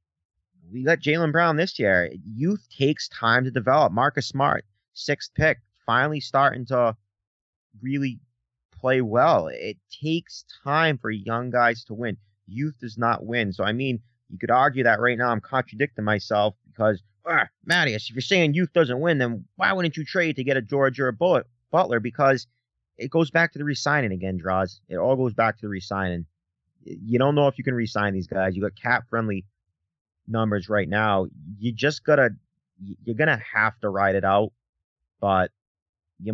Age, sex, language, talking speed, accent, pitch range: 30-49, male, English, 185 wpm, American, 95-125 Hz